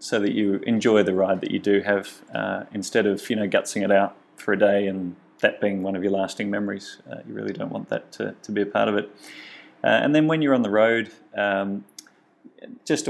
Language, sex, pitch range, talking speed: English, male, 100-110 Hz, 240 wpm